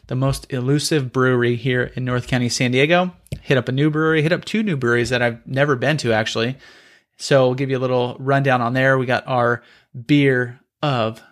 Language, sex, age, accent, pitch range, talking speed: English, male, 30-49, American, 120-150 Hz, 210 wpm